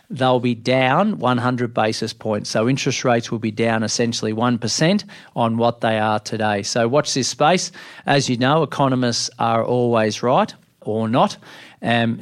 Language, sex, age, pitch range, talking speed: English, male, 40-59, 115-135 Hz, 160 wpm